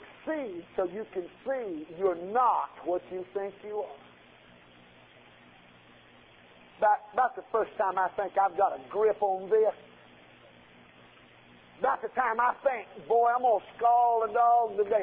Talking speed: 150 wpm